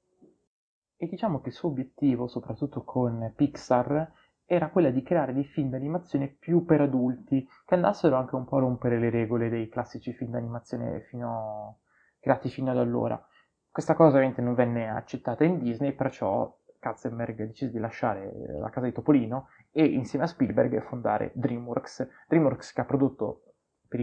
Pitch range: 120-145 Hz